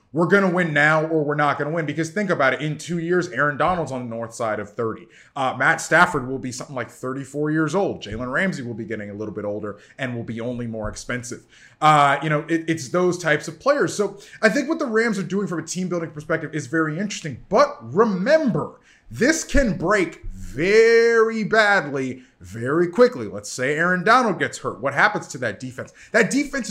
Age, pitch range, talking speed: 20-39, 135-200 Hz, 215 wpm